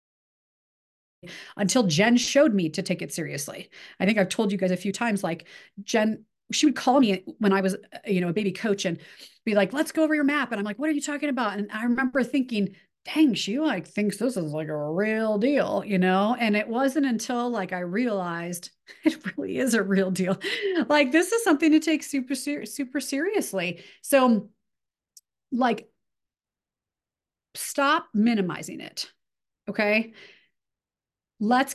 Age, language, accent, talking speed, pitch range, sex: 40-59, English, American, 175 wpm, 190-255 Hz, female